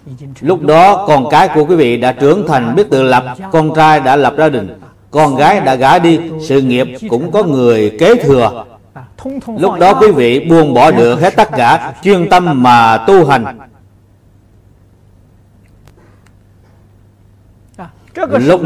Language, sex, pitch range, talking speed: Vietnamese, male, 110-160 Hz, 150 wpm